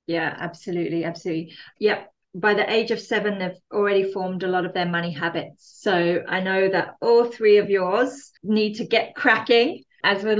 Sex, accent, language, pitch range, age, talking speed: female, British, English, 175-215 Hz, 30-49, 185 wpm